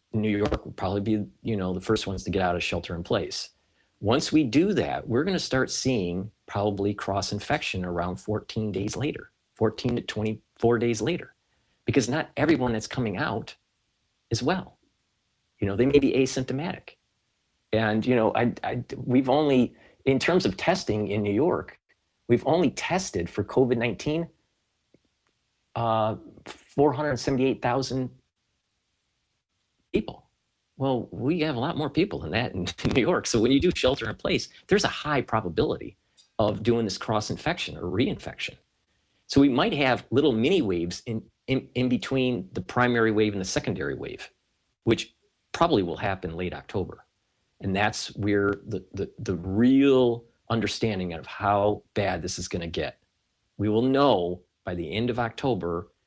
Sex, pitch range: male, 95-125 Hz